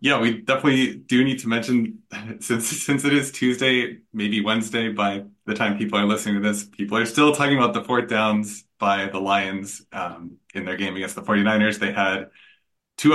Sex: male